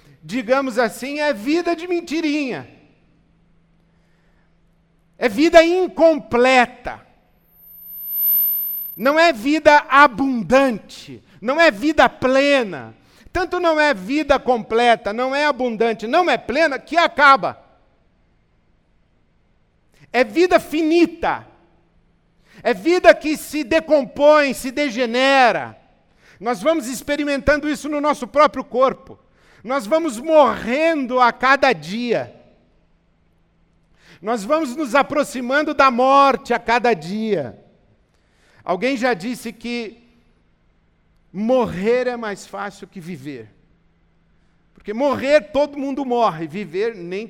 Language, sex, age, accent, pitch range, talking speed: Portuguese, male, 50-69, Brazilian, 200-295 Hz, 100 wpm